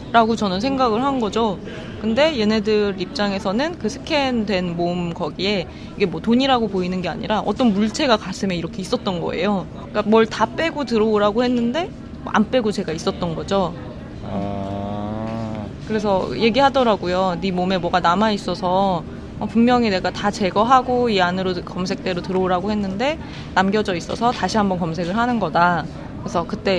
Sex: female